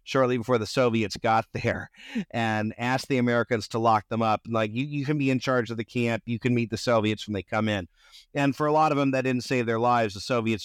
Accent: American